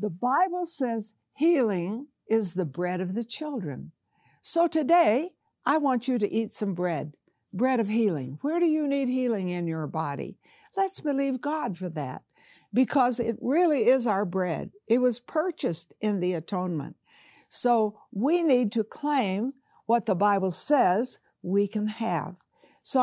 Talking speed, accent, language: 155 wpm, American, English